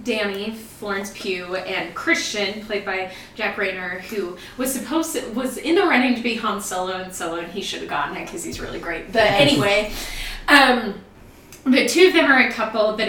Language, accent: English, American